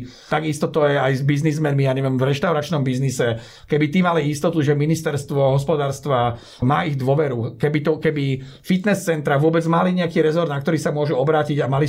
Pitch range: 140-165 Hz